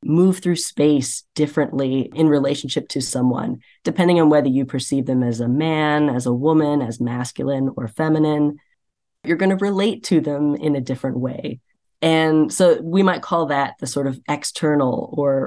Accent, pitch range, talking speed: American, 135-165 Hz, 175 wpm